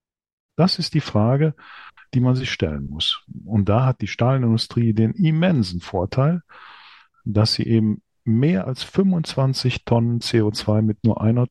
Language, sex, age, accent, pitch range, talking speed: German, male, 40-59, German, 100-125 Hz, 145 wpm